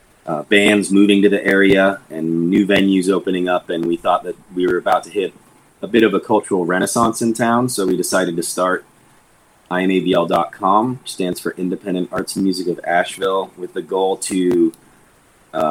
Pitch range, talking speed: 85-100 Hz, 185 wpm